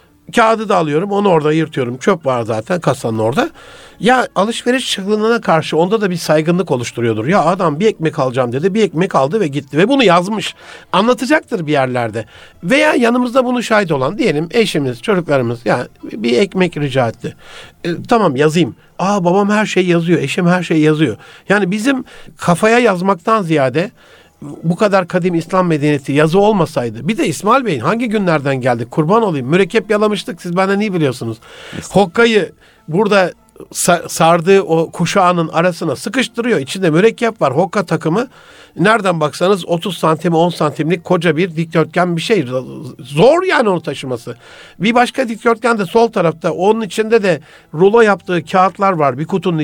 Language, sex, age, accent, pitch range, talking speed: Turkish, male, 60-79, native, 155-215 Hz, 160 wpm